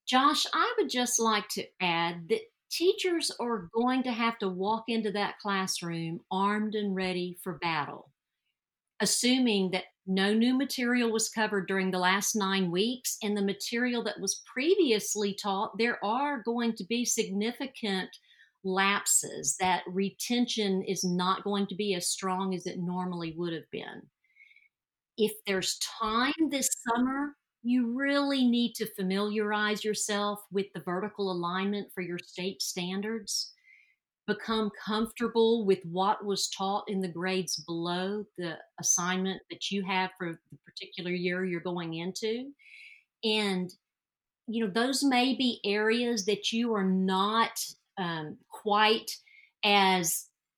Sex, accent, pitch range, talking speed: female, American, 185-235 Hz, 140 wpm